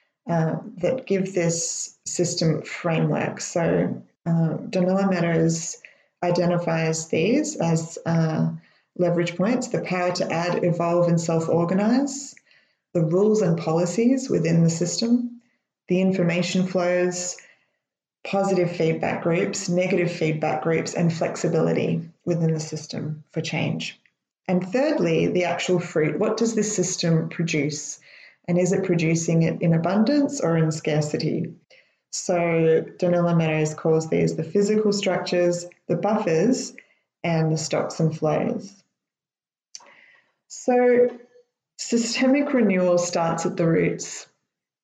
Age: 20-39